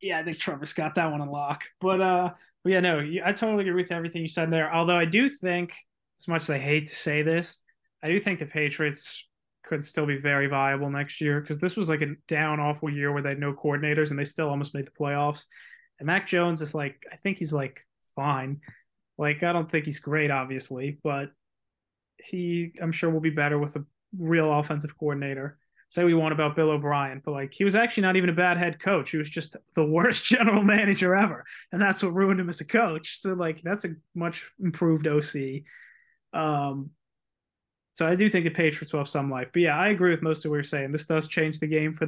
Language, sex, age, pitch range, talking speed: English, male, 20-39, 150-185 Hz, 230 wpm